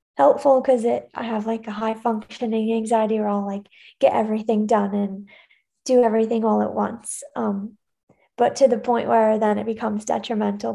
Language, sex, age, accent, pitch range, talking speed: English, female, 20-39, American, 220-250 Hz, 180 wpm